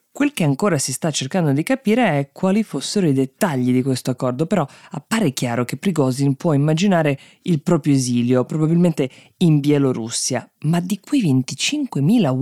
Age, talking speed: 20-39, 160 wpm